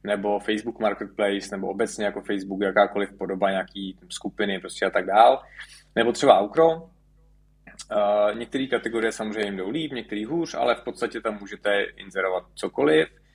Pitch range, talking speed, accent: 100-130 Hz, 150 wpm, native